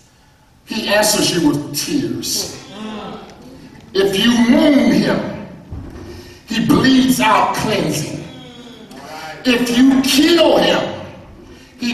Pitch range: 255-295 Hz